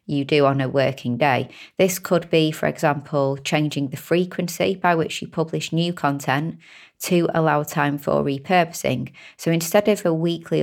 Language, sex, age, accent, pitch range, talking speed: English, female, 30-49, British, 140-165 Hz, 170 wpm